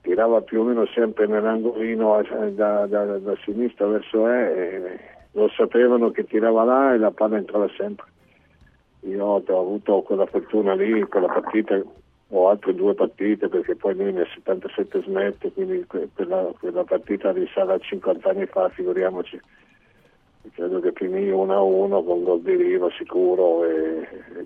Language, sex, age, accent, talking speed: Italian, male, 50-69, native, 155 wpm